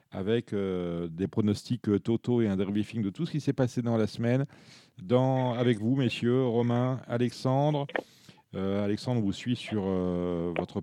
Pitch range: 115-155 Hz